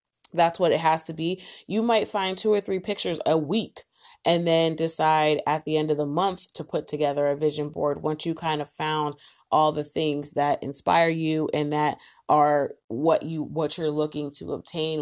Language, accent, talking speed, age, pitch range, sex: English, American, 205 wpm, 20-39, 150-170 Hz, female